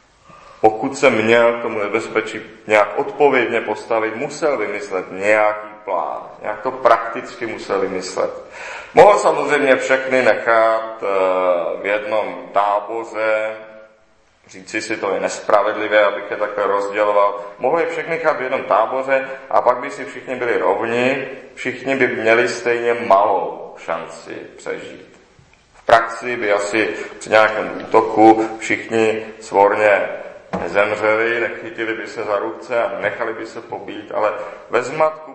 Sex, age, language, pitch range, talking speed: male, 40-59, Czech, 105-135 Hz, 130 wpm